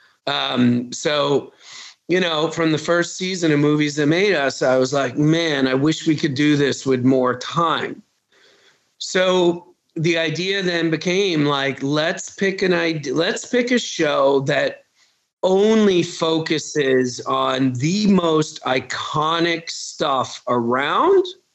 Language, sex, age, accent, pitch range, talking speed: English, male, 40-59, American, 150-200 Hz, 135 wpm